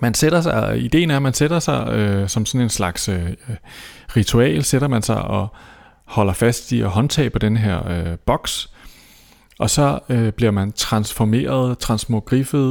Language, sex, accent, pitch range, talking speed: Danish, male, native, 95-120 Hz, 175 wpm